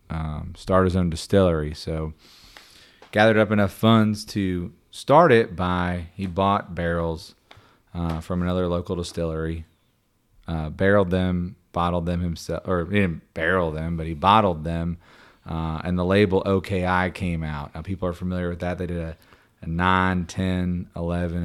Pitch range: 85-95 Hz